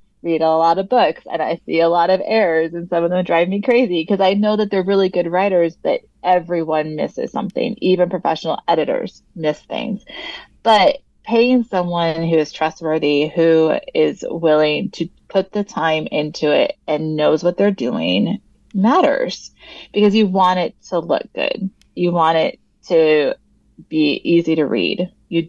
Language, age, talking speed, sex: English, 30-49, 170 wpm, female